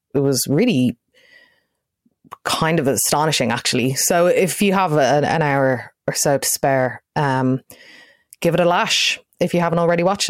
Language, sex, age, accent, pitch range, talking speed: English, female, 20-39, Irish, 150-195 Hz, 155 wpm